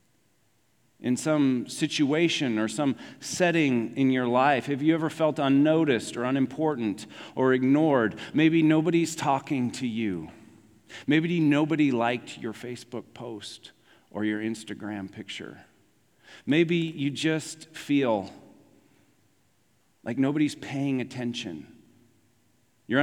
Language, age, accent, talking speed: English, 40-59, American, 110 wpm